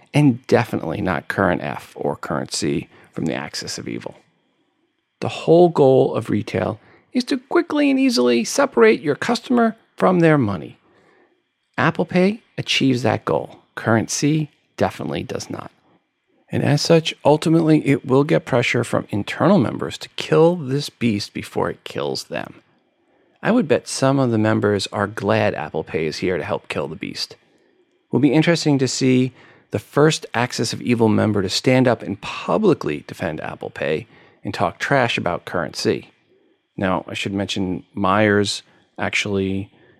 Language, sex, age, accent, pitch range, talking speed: English, male, 40-59, American, 100-145 Hz, 160 wpm